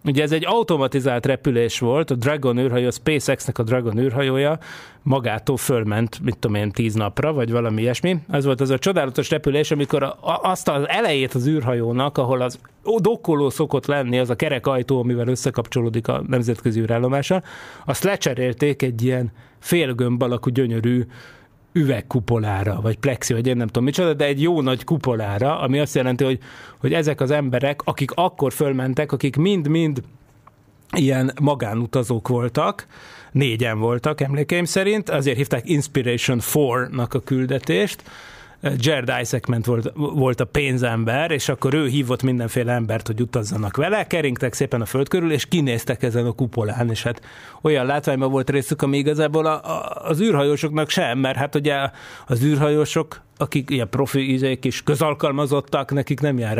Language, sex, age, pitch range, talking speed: Hungarian, male, 30-49, 125-150 Hz, 155 wpm